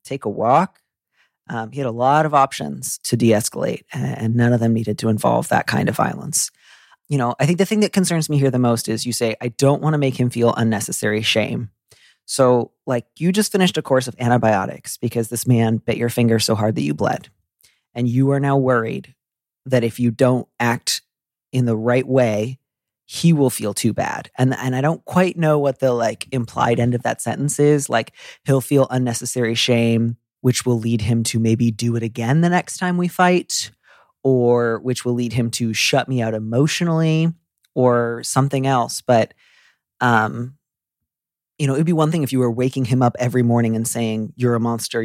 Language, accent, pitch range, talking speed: English, American, 115-135 Hz, 205 wpm